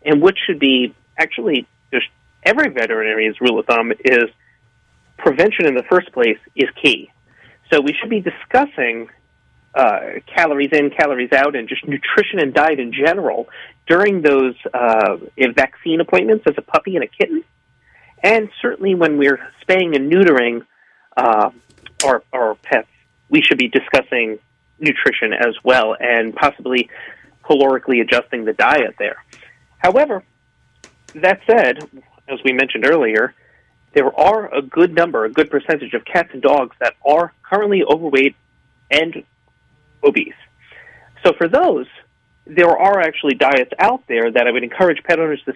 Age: 30-49